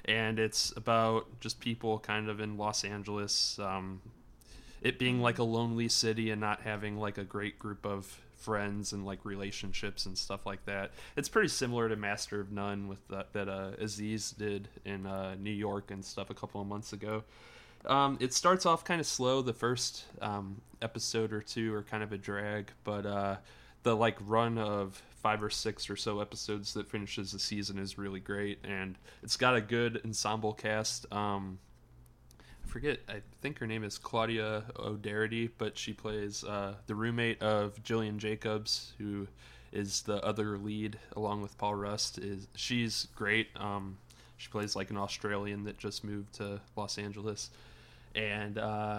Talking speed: 180 wpm